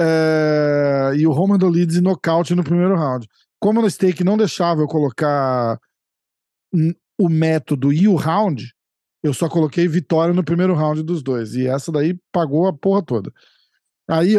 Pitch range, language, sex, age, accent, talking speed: 150-185 Hz, Portuguese, male, 50-69, Brazilian, 160 wpm